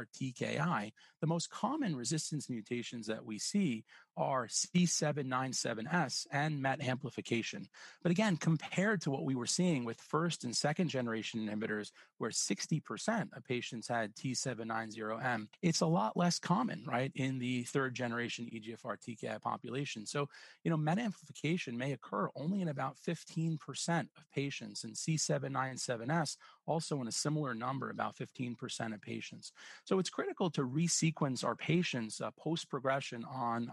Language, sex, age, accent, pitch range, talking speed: English, male, 30-49, American, 120-160 Hz, 145 wpm